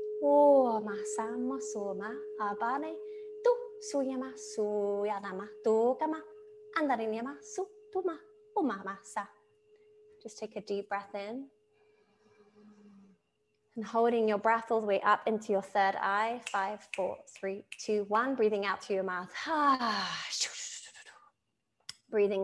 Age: 20-39